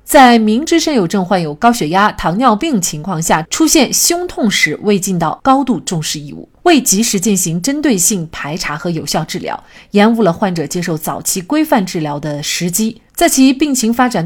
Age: 30-49